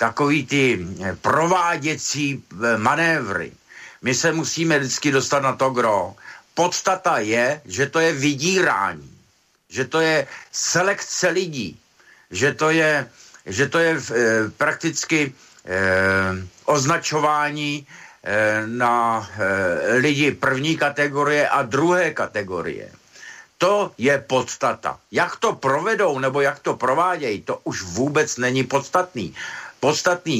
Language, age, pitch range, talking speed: Slovak, 60-79, 120-160 Hz, 115 wpm